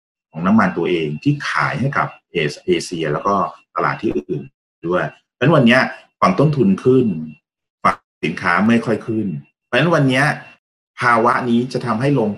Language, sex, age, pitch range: Thai, male, 30-49, 80-120 Hz